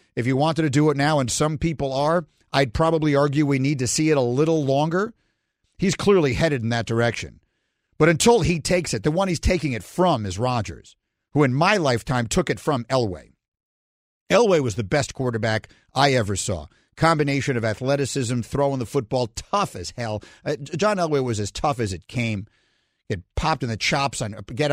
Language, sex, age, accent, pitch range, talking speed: English, male, 50-69, American, 110-150 Hz, 195 wpm